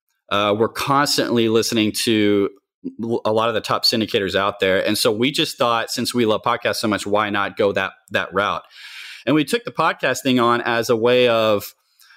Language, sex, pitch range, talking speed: Spanish, male, 110-140 Hz, 195 wpm